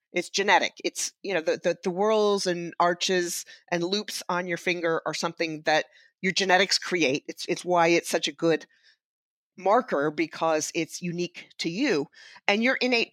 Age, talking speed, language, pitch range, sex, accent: 40-59, 175 wpm, English, 170-220 Hz, female, American